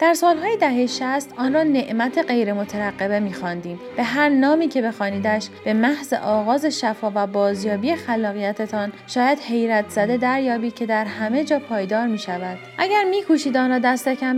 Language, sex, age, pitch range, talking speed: Persian, female, 30-49, 215-275 Hz, 155 wpm